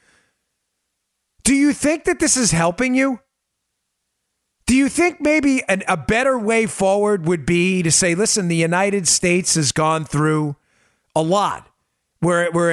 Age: 40-59